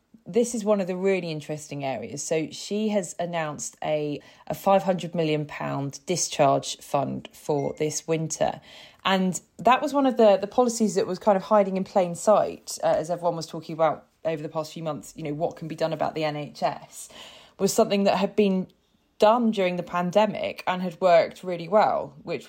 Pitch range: 150-185 Hz